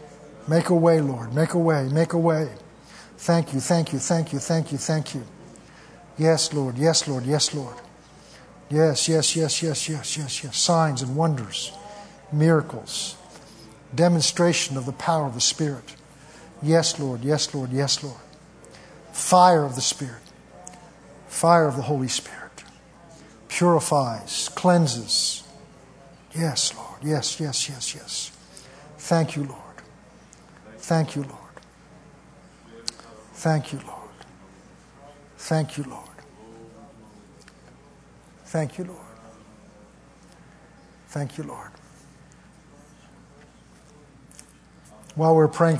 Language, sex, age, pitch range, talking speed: English, male, 60-79, 135-160 Hz, 120 wpm